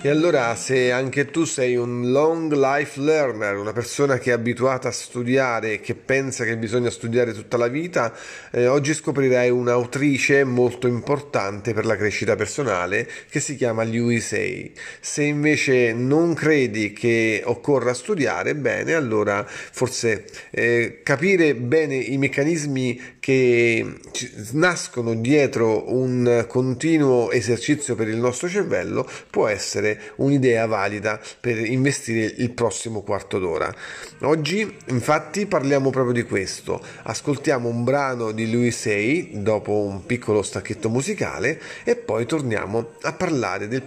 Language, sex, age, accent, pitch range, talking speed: Italian, male, 30-49, native, 115-145 Hz, 135 wpm